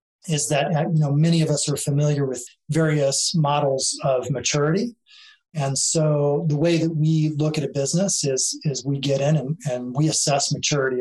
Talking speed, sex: 185 wpm, male